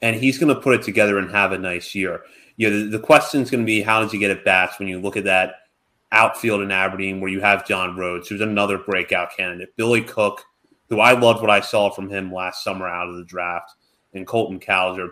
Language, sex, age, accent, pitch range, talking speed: English, male, 30-49, American, 95-115 Hz, 240 wpm